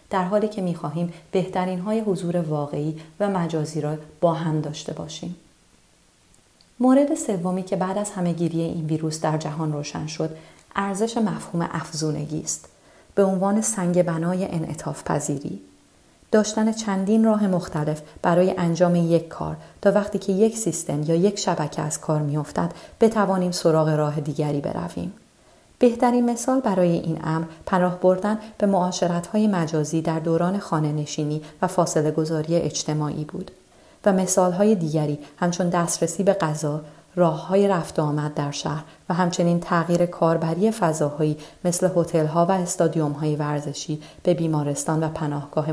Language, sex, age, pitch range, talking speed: Persian, female, 30-49, 155-195 Hz, 135 wpm